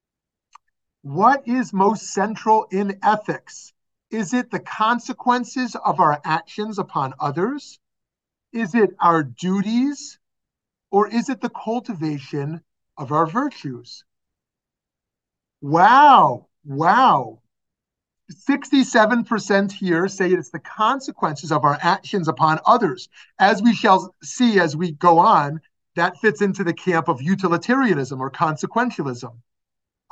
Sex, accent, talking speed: male, American, 115 wpm